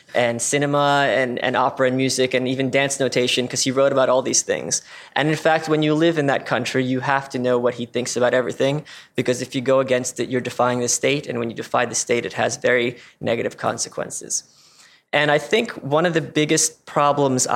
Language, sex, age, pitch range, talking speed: English, male, 20-39, 125-145 Hz, 220 wpm